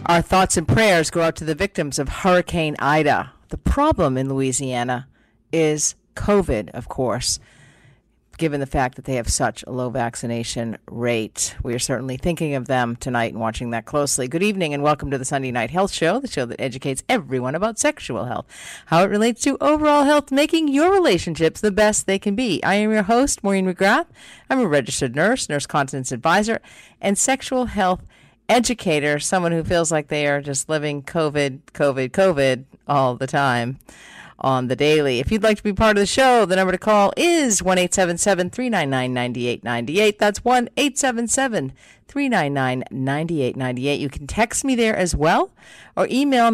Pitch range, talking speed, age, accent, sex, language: 135-215 Hz, 180 wpm, 50-69, American, female, English